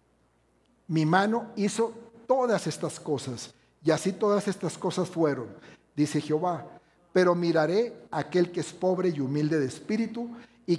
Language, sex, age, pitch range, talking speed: Spanish, male, 60-79, 125-190 Hz, 145 wpm